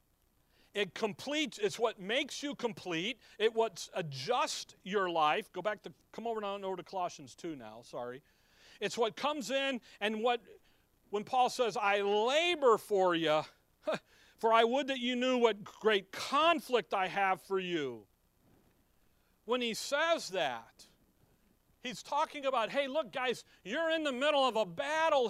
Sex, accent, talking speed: male, American, 160 wpm